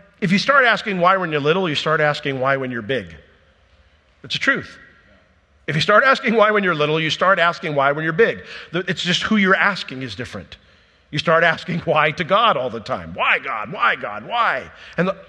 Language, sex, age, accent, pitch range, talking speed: English, male, 50-69, American, 145-200 Hz, 215 wpm